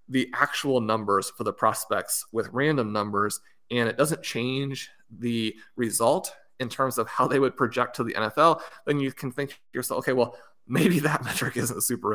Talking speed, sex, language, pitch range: 190 wpm, male, English, 110-130 Hz